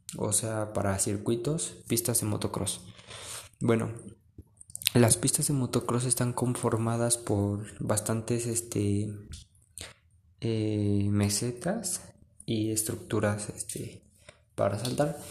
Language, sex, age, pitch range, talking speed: Spanish, male, 20-39, 110-125 Hz, 95 wpm